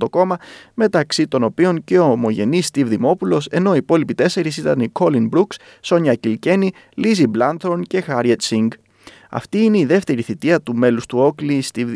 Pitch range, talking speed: 115-175 Hz, 170 wpm